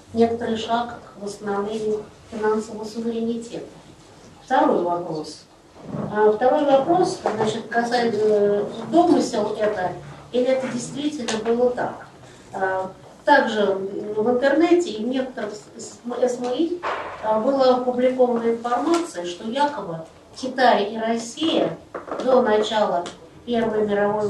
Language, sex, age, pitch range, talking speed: Russian, female, 40-59, 195-250 Hz, 90 wpm